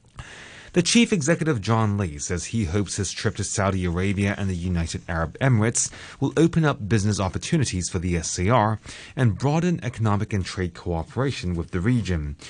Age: 30-49